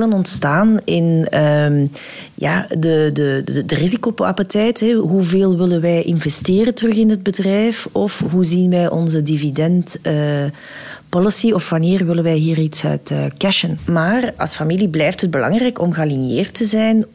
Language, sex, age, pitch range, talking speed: Dutch, female, 40-59, 150-180 Hz, 155 wpm